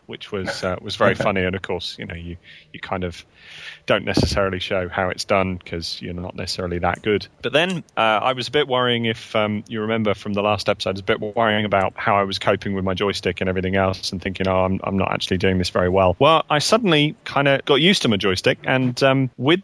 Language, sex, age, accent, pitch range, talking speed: English, male, 30-49, British, 95-130 Hz, 255 wpm